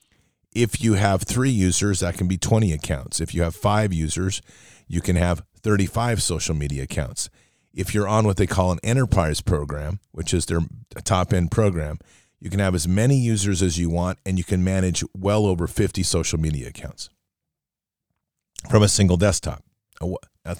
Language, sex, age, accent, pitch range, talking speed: English, male, 40-59, American, 90-110 Hz, 175 wpm